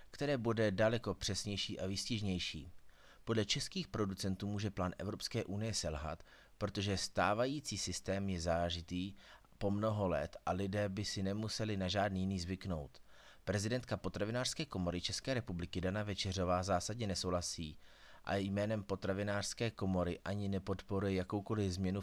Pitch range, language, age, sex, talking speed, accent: 90-105 Hz, Czech, 30-49, male, 130 wpm, native